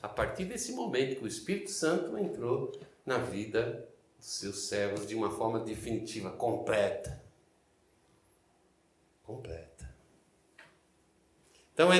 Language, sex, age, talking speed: Portuguese, male, 60-79, 110 wpm